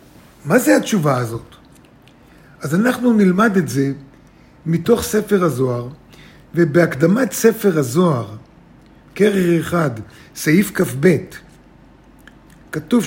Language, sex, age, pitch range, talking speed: Hebrew, male, 50-69, 155-210 Hz, 90 wpm